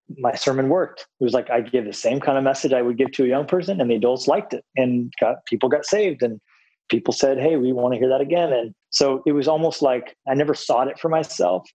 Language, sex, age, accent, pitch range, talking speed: English, male, 20-39, American, 120-135 Hz, 265 wpm